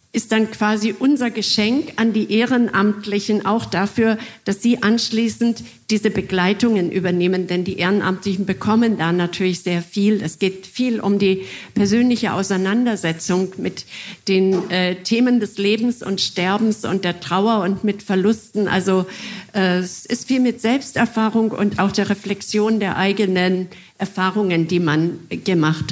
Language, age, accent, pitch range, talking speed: German, 50-69, German, 185-225 Hz, 145 wpm